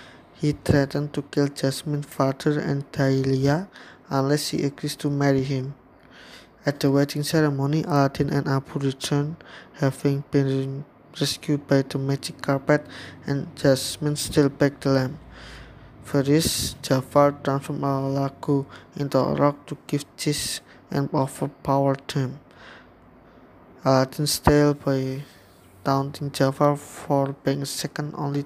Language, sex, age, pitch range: English, male, 20-39, 135-145 Hz